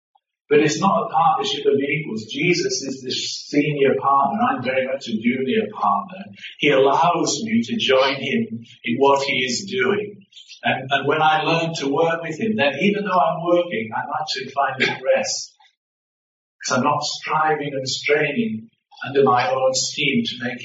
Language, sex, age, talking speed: English, male, 50-69, 170 wpm